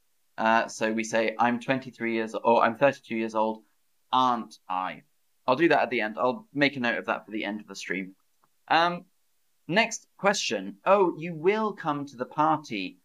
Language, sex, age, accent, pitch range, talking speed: English, male, 30-49, British, 115-160 Hz, 200 wpm